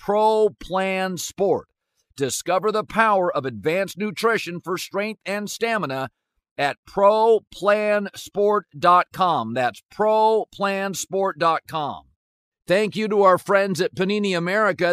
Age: 50-69